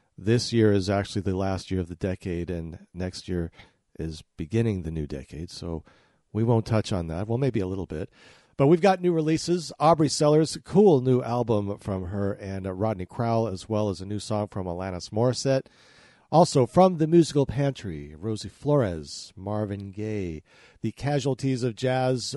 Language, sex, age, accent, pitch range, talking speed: English, male, 40-59, American, 100-145 Hz, 180 wpm